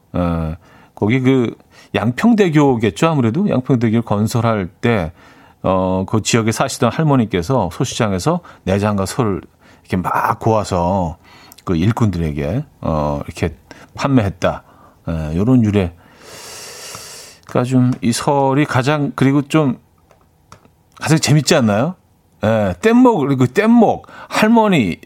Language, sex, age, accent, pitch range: Korean, male, 40-59, native, 95-145 Hz